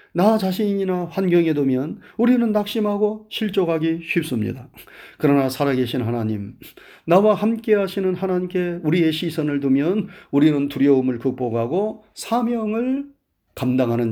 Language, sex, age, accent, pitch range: Korean, male, 40-59, native, 150-215 Hz